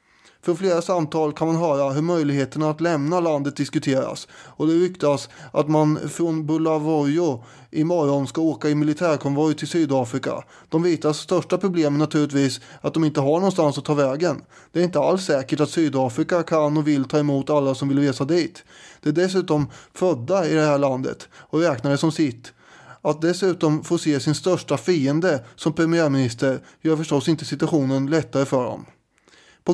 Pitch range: 140-165 Hz